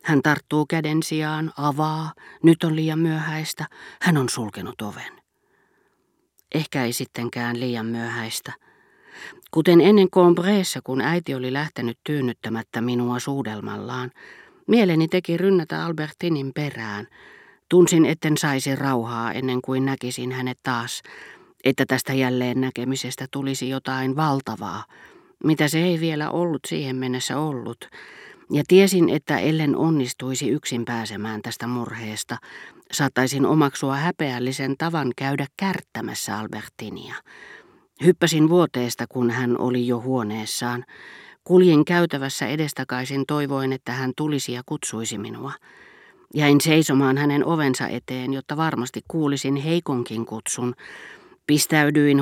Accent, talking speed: native, 115 wpm